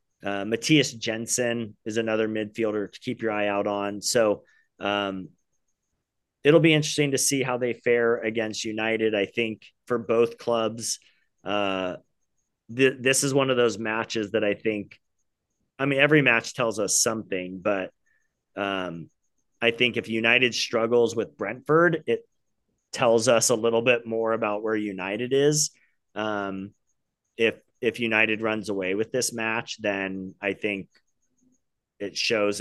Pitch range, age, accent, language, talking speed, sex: 100-135 Hz, 30-49, American, English, 145 wpm, male